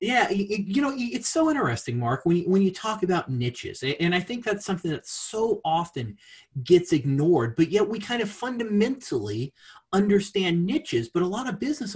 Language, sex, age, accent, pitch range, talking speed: English, male, 30-49, American, 155-245 Hz, 175 wpm